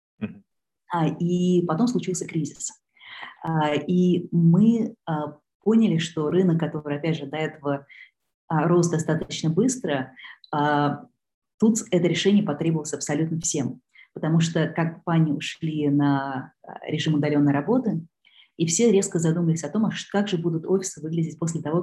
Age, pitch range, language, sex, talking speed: 30-49, 150-180 Hz, Russian, female, 130 wpm